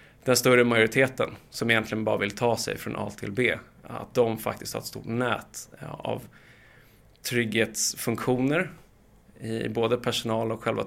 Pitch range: 110-130 Hz